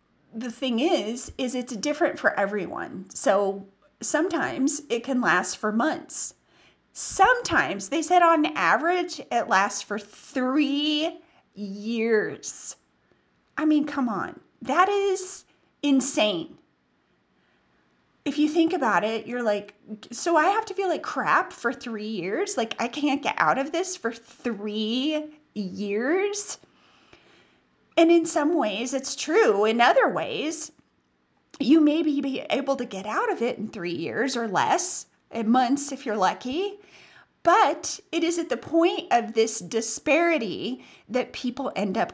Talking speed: 140 wpm